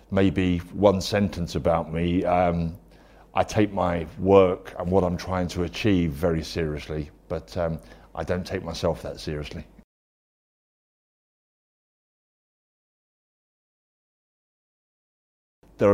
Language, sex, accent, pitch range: Chinese, male, British, 80-90 Hz